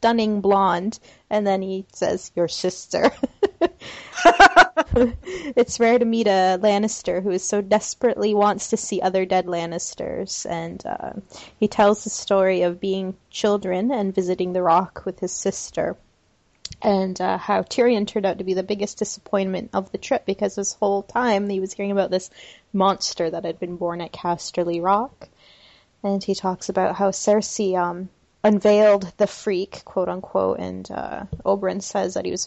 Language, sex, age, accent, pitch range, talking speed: English, female, 20-39, American, 180-210 Hz, 165 wpm